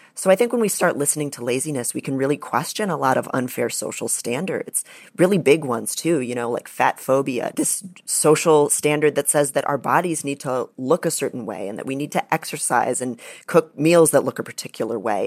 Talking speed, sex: 220 wpm, female